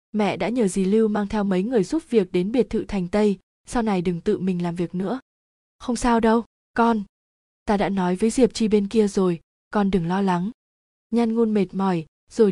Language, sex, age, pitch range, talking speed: Vietnamese, female, 20-39, 185-225 Hz, 220 wpm